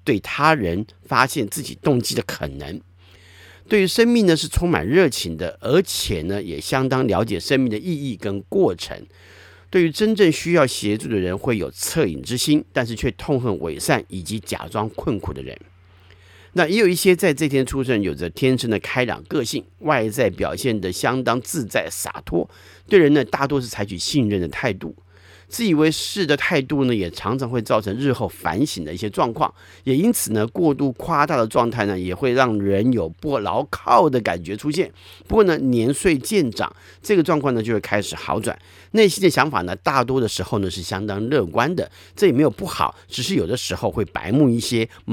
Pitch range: 95-135 Hz